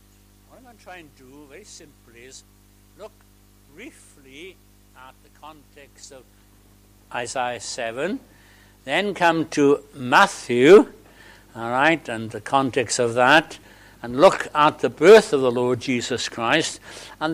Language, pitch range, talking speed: English, 110-165 Hz, 140 wpm